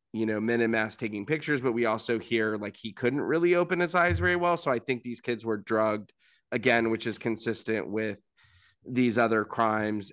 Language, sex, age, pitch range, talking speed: English, male, 20-39, 110-125 Hz, 205 wpm